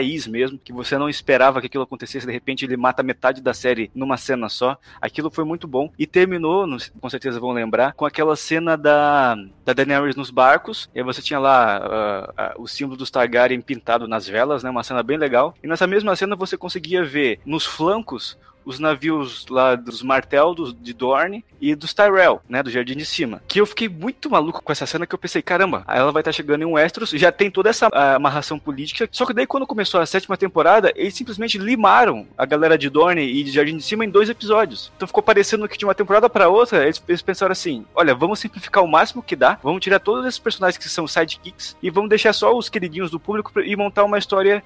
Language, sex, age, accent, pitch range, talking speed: Portuguese, male, 20-39, Brazilian, 140-205 Hz, 225 wpm